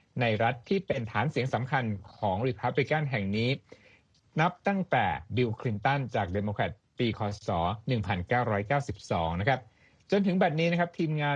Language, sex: Thai, male